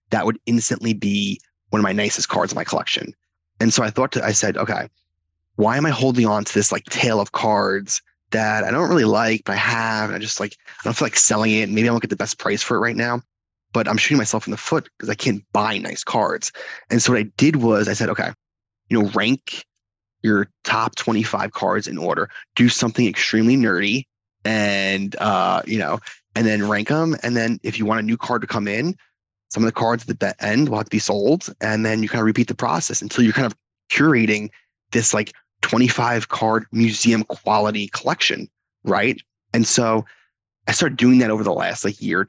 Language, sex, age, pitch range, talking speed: English, male, 20-39, 105-120 Hz, 225 wpm